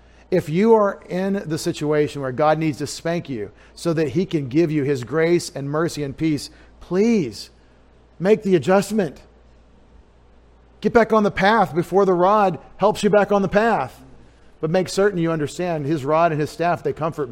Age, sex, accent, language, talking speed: 40-59, male, American, English, 185 wpm